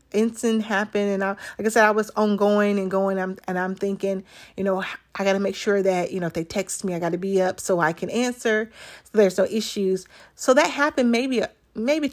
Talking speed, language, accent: 245 wpm, English, American